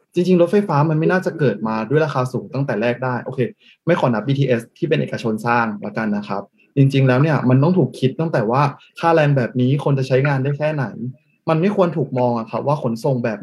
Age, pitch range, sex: 20-39, 125-160 Hz, male